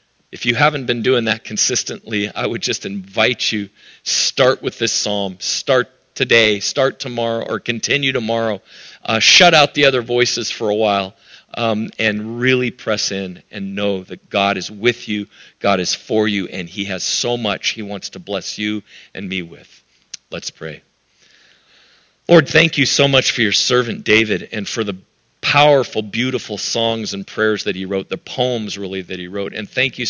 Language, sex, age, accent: English, male, 40-59, American